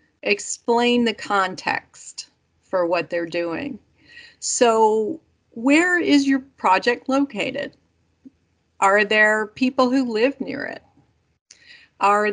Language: English